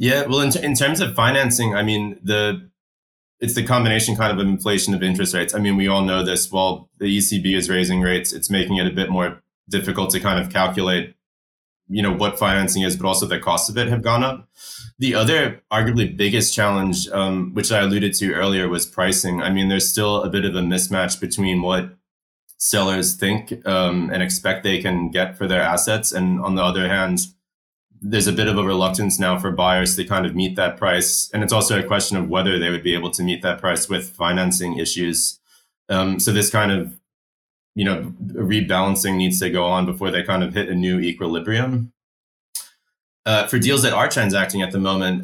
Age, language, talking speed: 20-39, English, 210 wpm